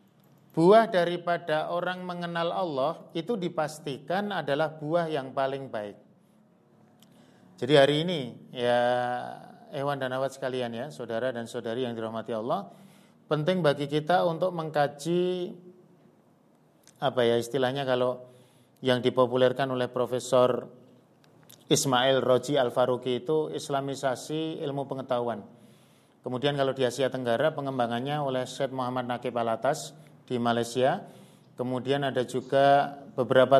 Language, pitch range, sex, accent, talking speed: Indonesian, 125-155 Hz, male, native, 115 wpm